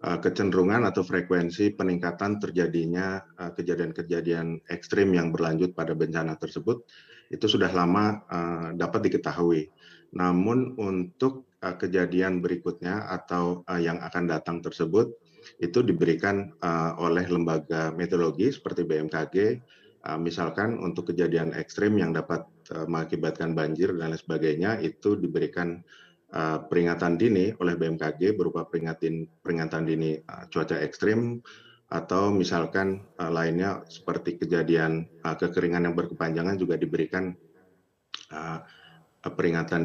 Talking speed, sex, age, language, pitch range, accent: 100 wpm, male, 30-49, Indonesian, 80-90 Hz, native